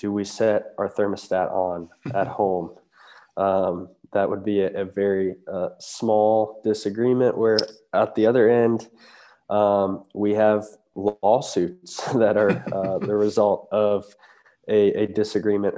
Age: 20-39